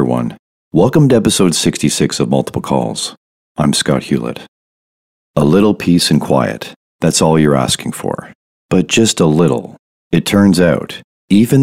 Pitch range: 75-90 Hz